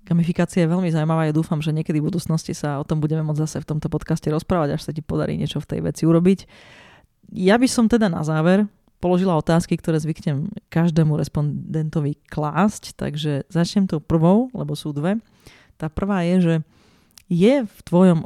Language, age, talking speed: Slovak, 30-49, 185 wpm